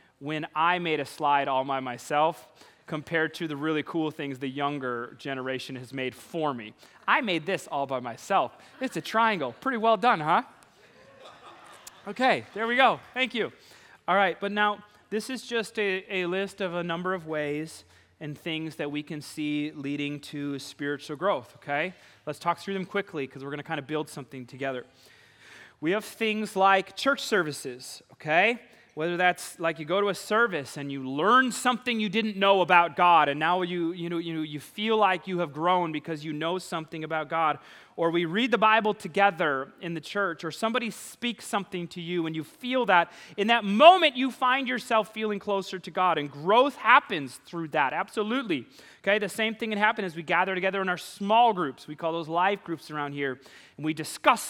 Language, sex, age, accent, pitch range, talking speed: English, male, 30-49, American, 150-210 Hz, 200 wpm